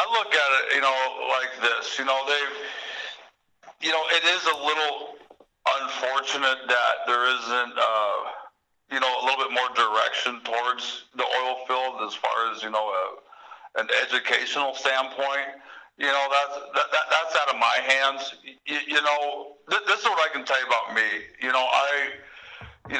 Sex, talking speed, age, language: male, 180 wpm, 60-79, English